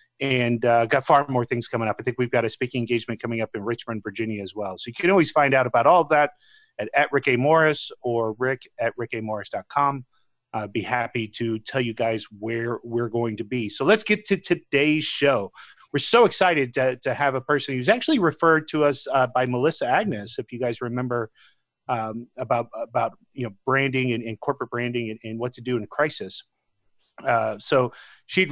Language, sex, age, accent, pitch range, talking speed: English, male, 30-49, American, 120-155 Hz, 215 wpm